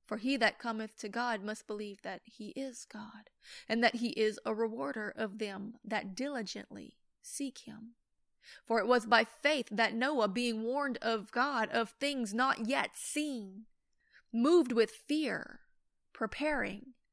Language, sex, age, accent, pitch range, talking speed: English, female, 30-49, American, 215-255 Hz, 155 wpm